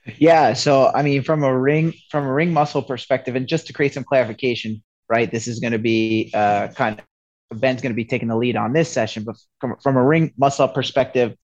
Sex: male